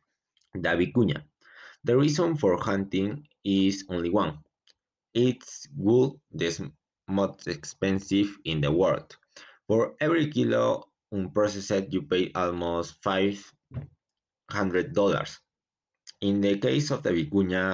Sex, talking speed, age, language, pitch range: male, 105 wpm, 30-49, Spanish, 90-105 Hz